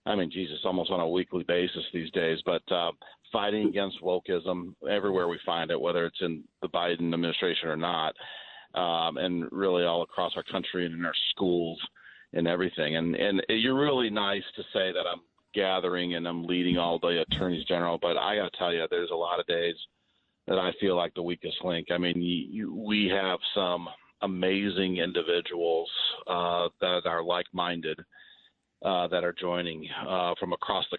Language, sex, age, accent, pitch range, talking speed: English, male, 40-59, American, 85-95 Hz, 190 wpm